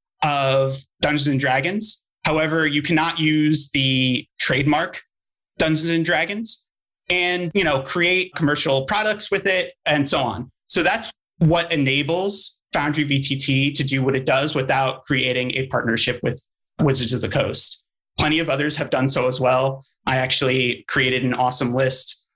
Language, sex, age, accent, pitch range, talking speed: English, male, 30-49, American, 130-155 Hz, 155 wpm